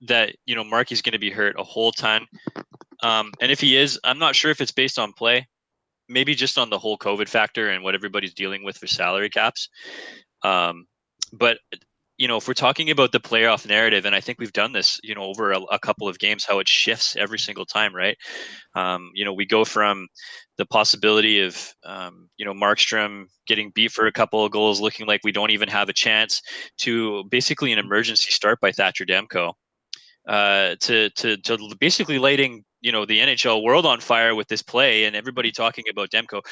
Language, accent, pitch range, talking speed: English, American, 100-125 Hz, 210 wpm